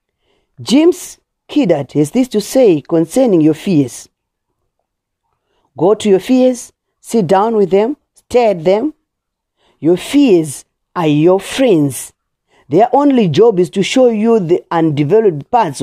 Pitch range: 165-255 Hz